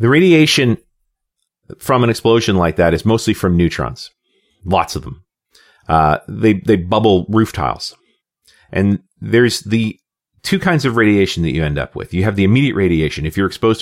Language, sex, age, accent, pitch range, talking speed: English, male, 40-59, American, 85-110 Hz, 175 wpm